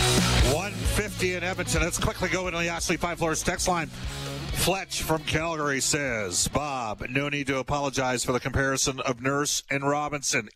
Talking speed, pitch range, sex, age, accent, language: 165 wpm, 105-140 Hz, male, 40-59, American, English